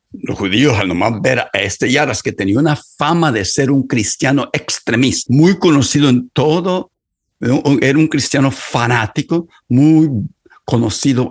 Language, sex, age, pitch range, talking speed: Spanish, male, 60-79, 110-150 Hz, 145 wpm